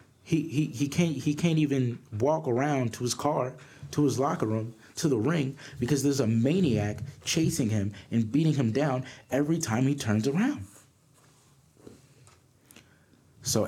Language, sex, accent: English, male, American